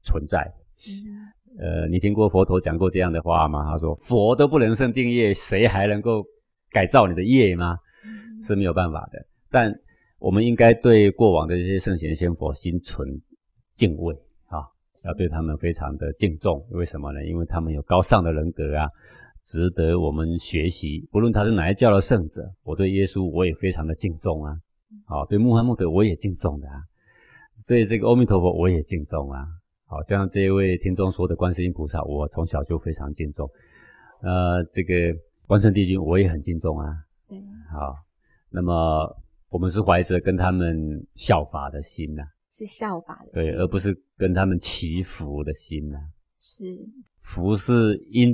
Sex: male